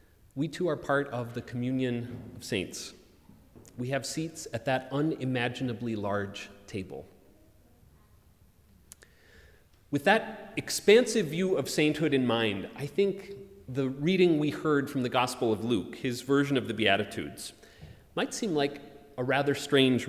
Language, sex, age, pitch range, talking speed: English, male, 30-49, 105-150 Hz, 140 wpm